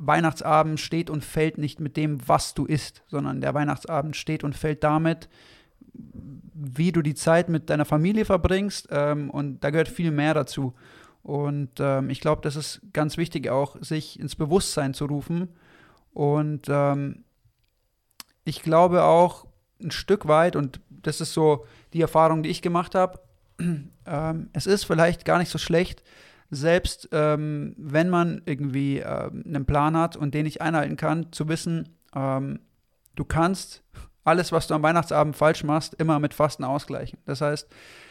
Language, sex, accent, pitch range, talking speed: German, male, German, 145-165 Hz, 155 wpm